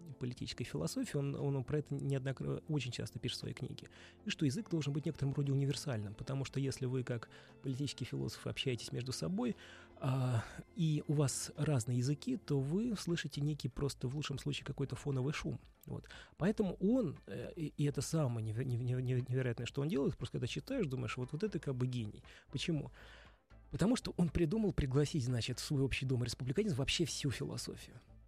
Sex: male